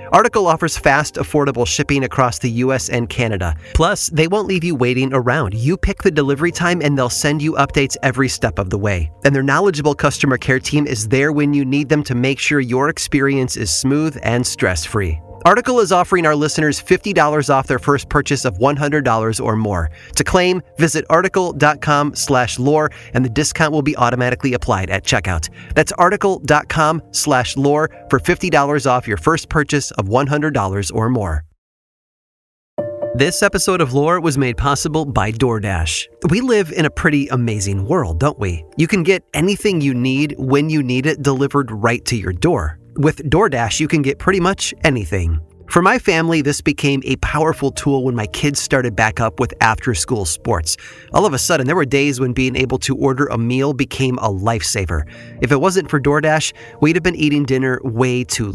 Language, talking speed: English, 190 wpm